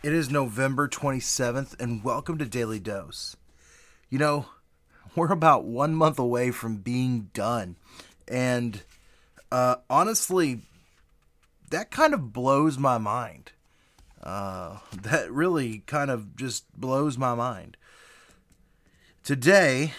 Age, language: 30-49, English